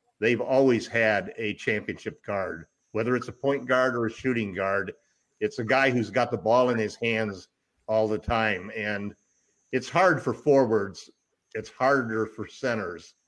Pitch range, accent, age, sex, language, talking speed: 110-135 Hz, American, 50-69, male, English, 165 wpm